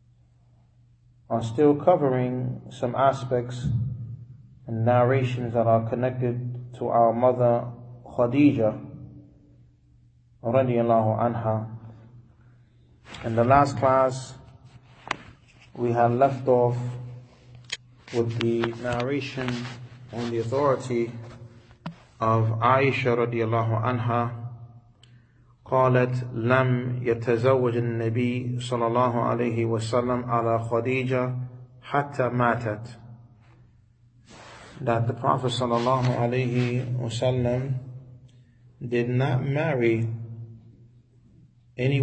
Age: 30-49